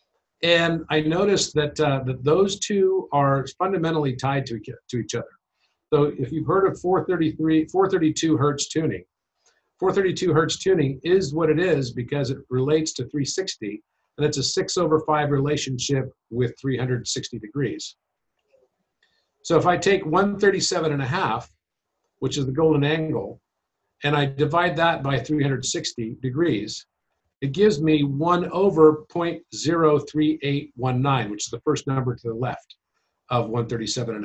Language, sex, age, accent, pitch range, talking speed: English, male, 50-69, American, 130-165 Hz, 145 wpm